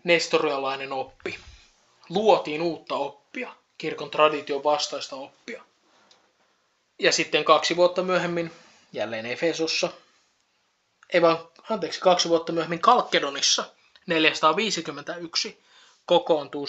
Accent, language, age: native, Finnish, 20-39